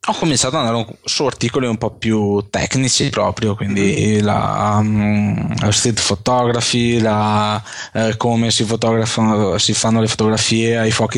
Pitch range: 110-125 Hz